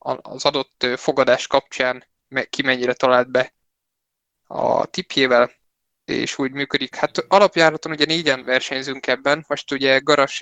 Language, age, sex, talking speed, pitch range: Hungarian, 20-39, male, 125 wpm, 125-145 Hz